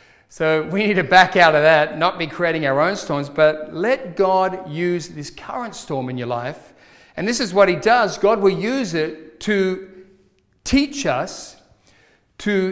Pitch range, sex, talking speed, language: 165-210 Hz, male, 180 wpm, English